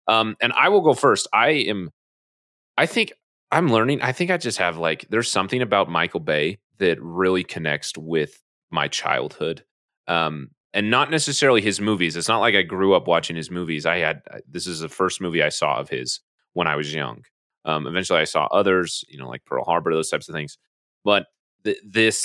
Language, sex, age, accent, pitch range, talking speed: English, male, 30-49, American, 85-120 Hz, 200 wpm